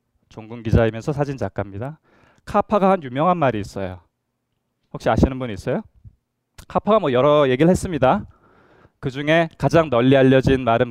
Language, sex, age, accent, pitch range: Korean, male, 20-39, native, 120-175 Hz